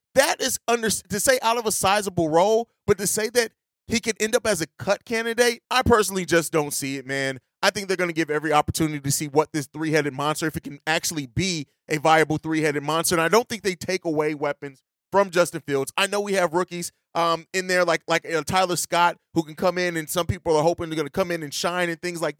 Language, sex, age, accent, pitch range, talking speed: English, male, 30-49, American, 155-195 Hz, 255 wpm